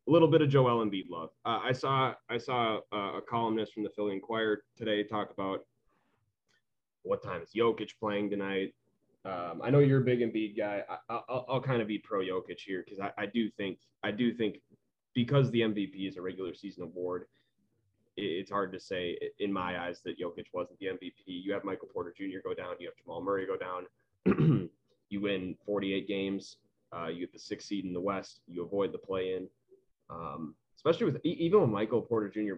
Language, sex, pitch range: English, male, 100-125 Hz